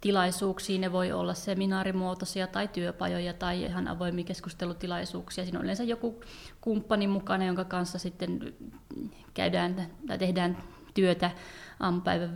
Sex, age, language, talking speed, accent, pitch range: female, 30-49, Finnish, 115 wpm, native, 175-190 Hz